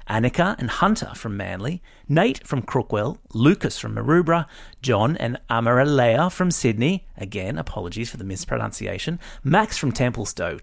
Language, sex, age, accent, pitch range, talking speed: English, male, 30-49, Australian, 115-165 Hz, 135 wpm